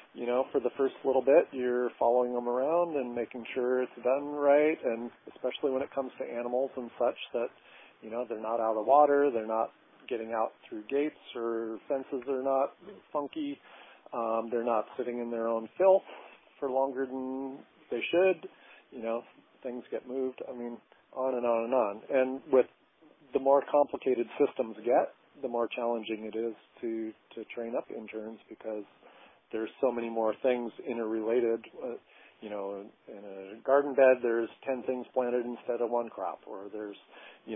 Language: English